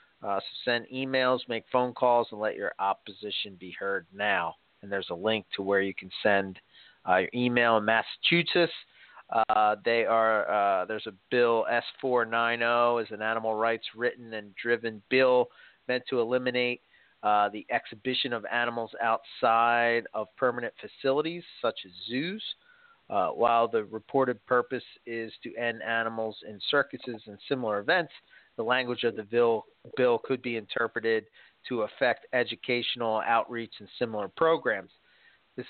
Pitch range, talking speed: 110-125 Hz, 145 wpm